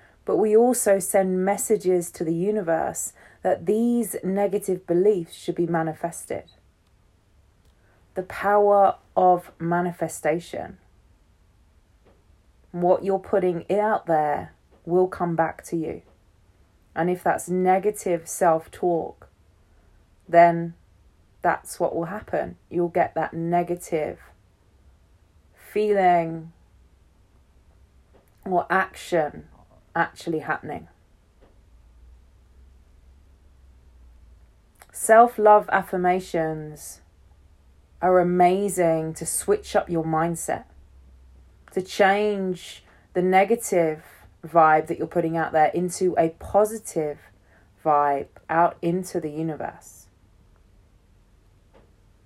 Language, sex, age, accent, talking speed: English, female, 20-39, British, 85 wpm